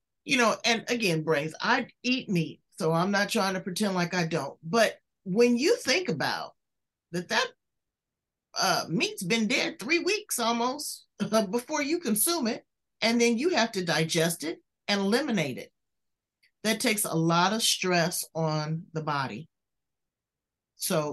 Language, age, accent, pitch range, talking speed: English, 40-59, American, 165-225 Hz, 160 wpm